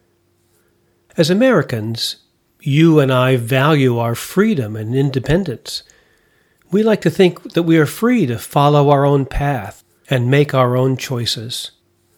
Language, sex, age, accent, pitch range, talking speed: English, male, 40-59, American, 120-160 Hz, 140 wpm